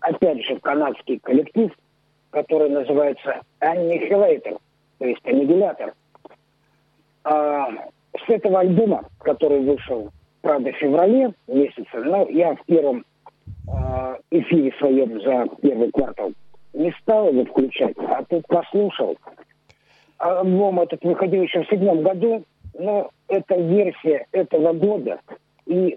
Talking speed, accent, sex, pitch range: 110 wpm, native, male, 145-200 Hz